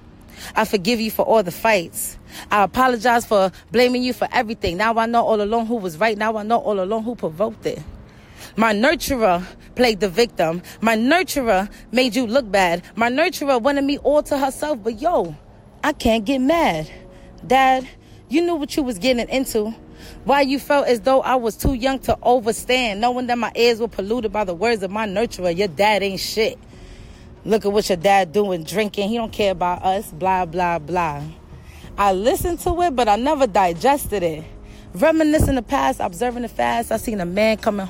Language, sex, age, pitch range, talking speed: English, female, 30-49, 195-255 Hz, 195 wpm